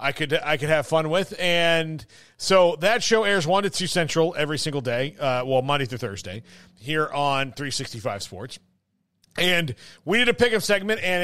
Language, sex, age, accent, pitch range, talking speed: English, male, 40-59, American, 145-190 Hz, 185 wpm